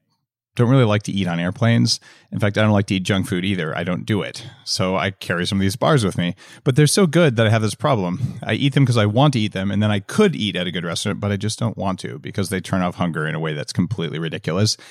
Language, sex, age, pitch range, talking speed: English, male, 30-49, 95-130 Hz, 300 wpm